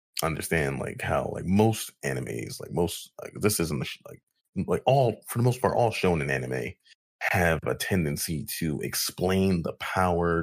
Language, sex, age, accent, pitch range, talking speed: English, male, 30-49, American, 80-105 Hz, 180 wpm